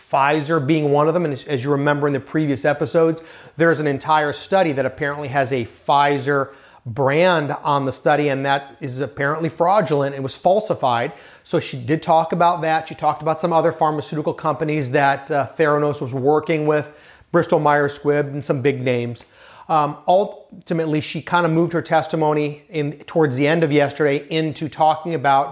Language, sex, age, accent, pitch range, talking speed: English, male, 30-49, American, 140-165 Hz, 180 wpm